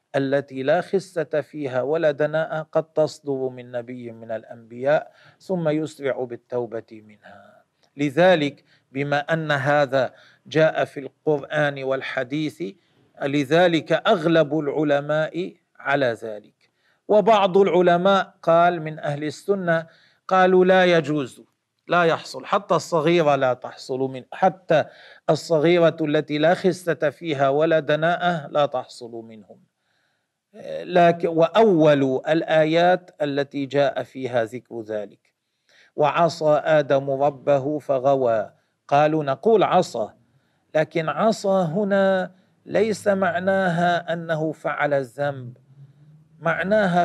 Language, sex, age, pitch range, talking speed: Arabic, male, 40-59, 140-170 Hz, 100 wpm